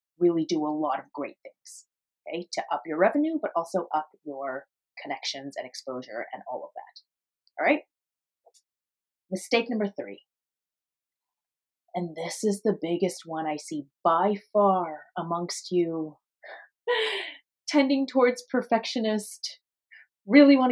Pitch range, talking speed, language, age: 170-235 Hz, 130 wpm, English, 30-49